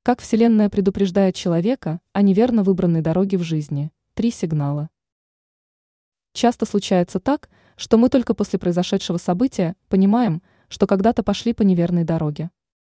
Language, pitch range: Russian, 175-220 Hz